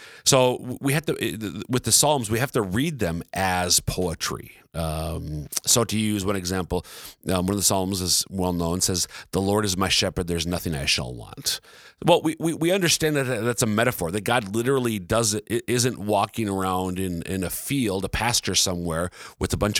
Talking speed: 195 wpm